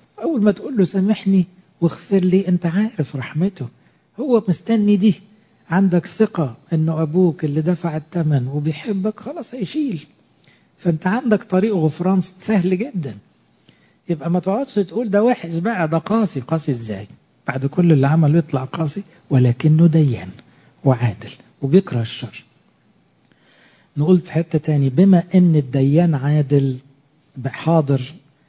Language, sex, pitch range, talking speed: English, male, 145-185 Hz, 125 wpm